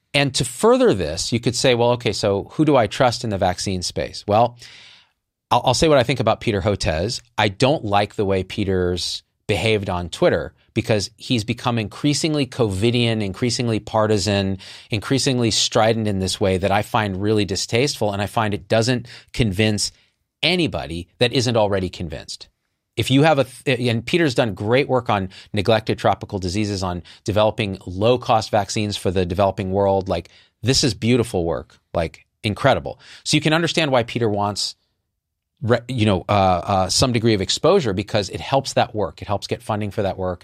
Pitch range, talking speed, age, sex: 95-120 Hz, 180 wpm, 40-59, male